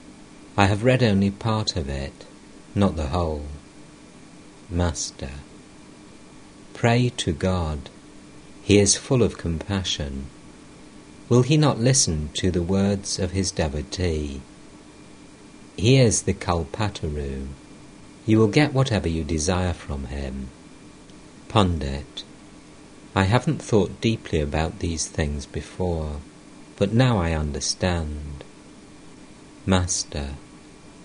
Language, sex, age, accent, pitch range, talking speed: English, male, 50-69, British, 75-105 Hz, 105 wpm